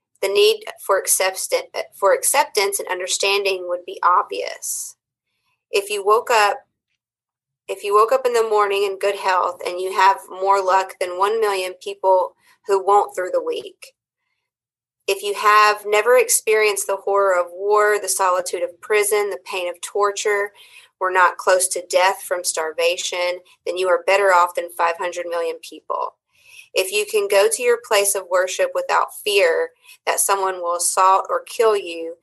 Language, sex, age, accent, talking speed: English, female, 30-49, American, 170 wpm